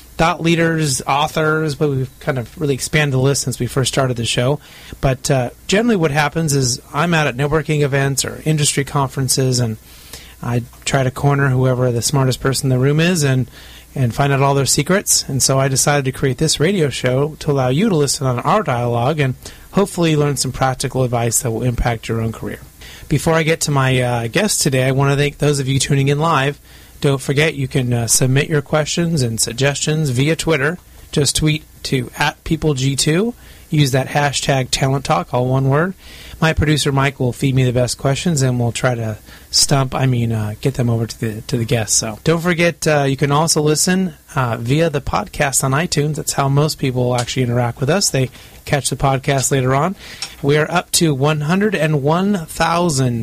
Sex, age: male, 30-49